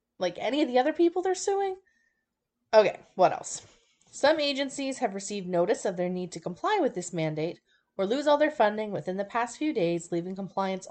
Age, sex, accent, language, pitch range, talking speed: 20-39, female, American, English, 180-275 Hz, 200 wpm